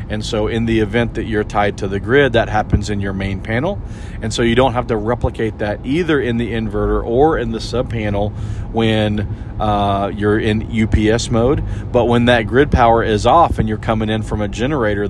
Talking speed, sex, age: 210 wpm, male, 40-59